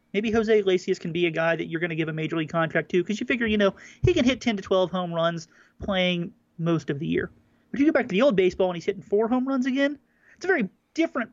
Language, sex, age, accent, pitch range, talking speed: English, male, 30-49, American, 160-210 Hz, 290 wpm